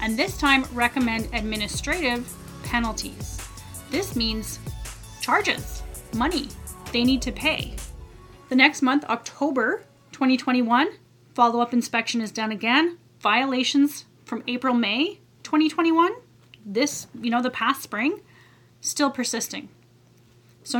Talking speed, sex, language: 110 wpm, female, English